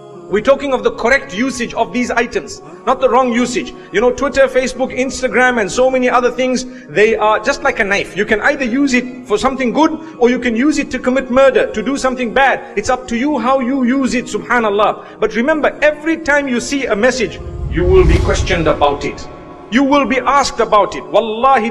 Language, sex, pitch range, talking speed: English, male, 210-275 Hz, 220 wpm